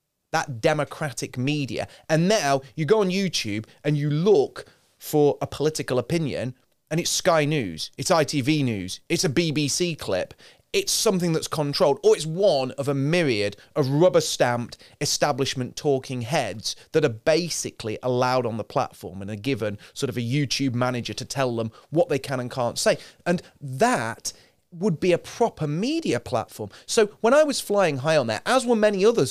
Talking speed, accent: 180 wpm, British